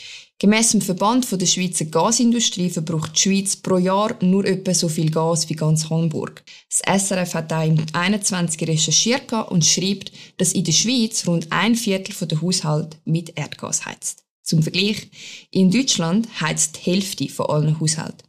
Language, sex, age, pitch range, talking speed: German, female, 20-39, 160-205 Hz, 165 wpm